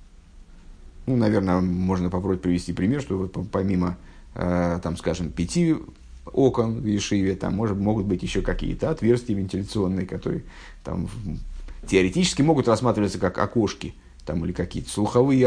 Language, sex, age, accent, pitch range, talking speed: Russian, male, 50-69, native, 95-125 Hz, 115 wpm